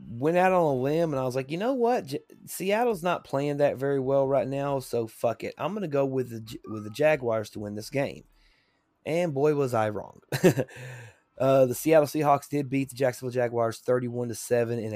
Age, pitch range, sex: 30-49, 115-140 Hz, male